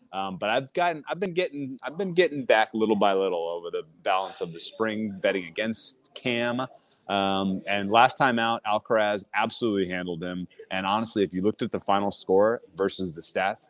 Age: 30-49